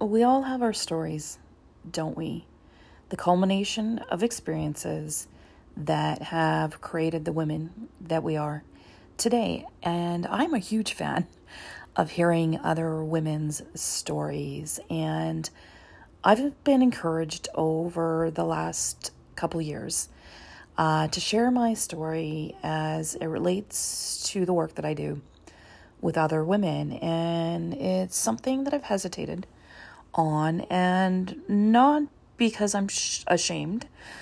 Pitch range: 155-200 Hz